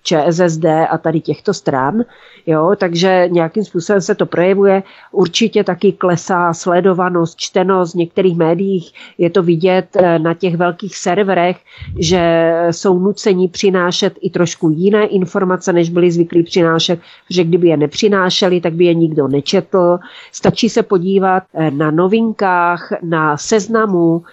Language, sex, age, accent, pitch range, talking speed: Czech, female, 40-59, native, 170-205 Hz, 135 wpm